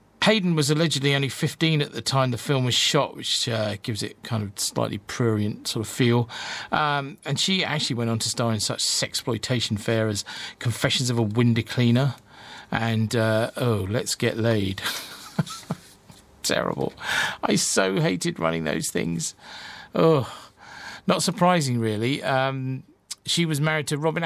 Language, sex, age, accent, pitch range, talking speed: English, male, 40-59, British, 110-140 Hz, 160 wpm